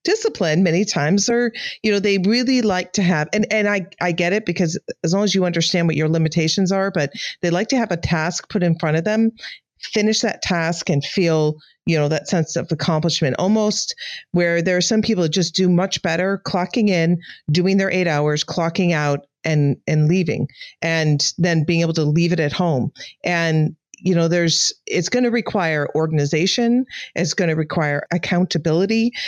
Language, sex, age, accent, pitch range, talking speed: English, female, 40-59, American, 155-195 Hz, 195 wpm